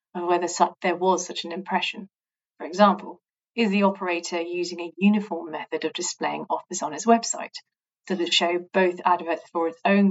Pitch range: 170-210 Hz